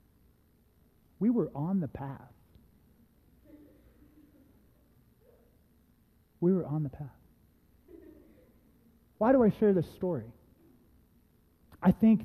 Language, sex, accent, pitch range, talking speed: English, male, American, 140-190 Hz, 90 wpm